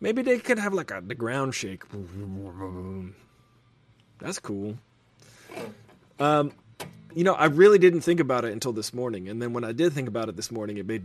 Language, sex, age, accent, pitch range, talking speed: English, male, 30-49, American, 115-160 Hz, 190 wpm